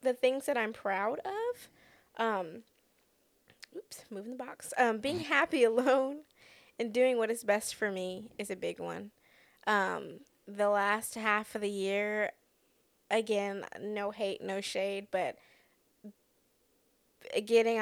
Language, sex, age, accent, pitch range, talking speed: English, female, 10-29, American, 190-235 Hz, 135 wpm